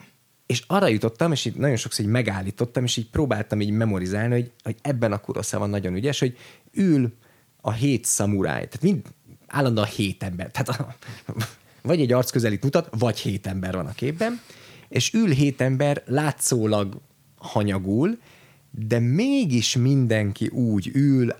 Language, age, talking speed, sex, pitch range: Hungarian, 20-39, 155 wpm, male, 105-140 Hz